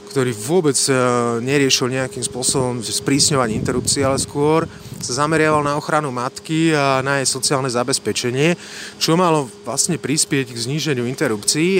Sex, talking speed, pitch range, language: male, 130 wpm, 130-160 Hz, Slovak